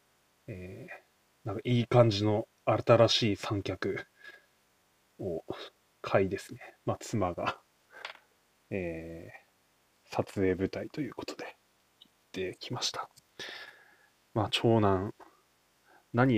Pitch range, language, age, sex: 95-115 Hz, Japanese, 20-39, male